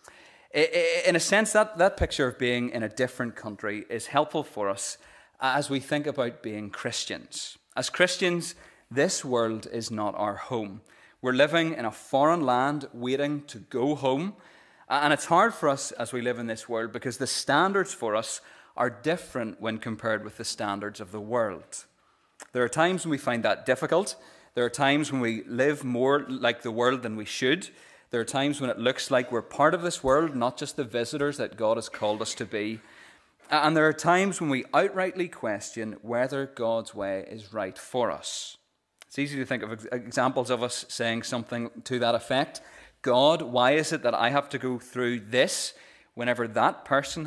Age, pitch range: 30-49, 115-150 Hz